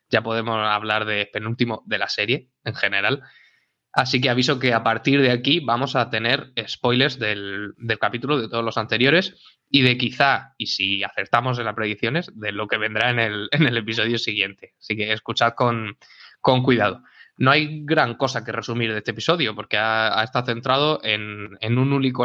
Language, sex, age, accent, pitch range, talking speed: Spanish, male, 20-39, Spanish, 110-135 Hz, 190 wpm